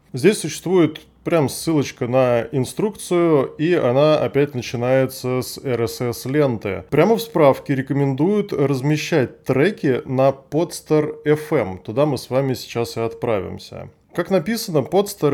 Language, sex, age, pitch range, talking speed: Russian, male, 20-39, 120-150 Hz, 115 wpm